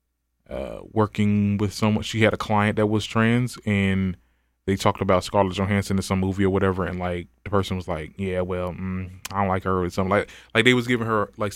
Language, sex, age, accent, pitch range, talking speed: English, male, 20-39, American, 90-115 Hz, 230 wpm